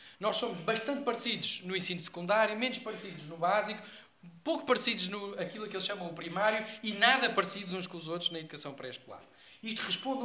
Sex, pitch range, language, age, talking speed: male, 175-215 Hz, Portuguese, 20-39, 180 wpm